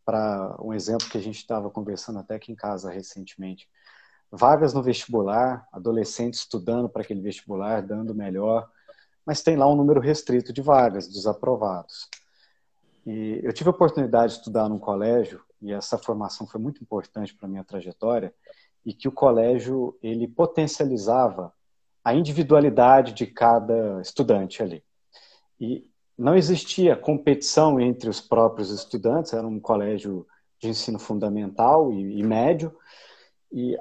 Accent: Brazilian